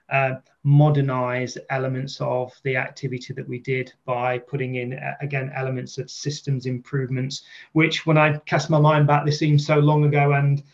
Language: English